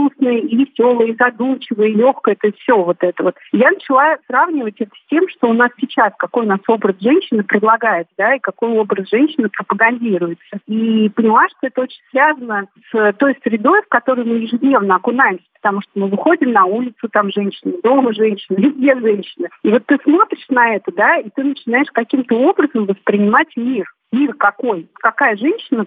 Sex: female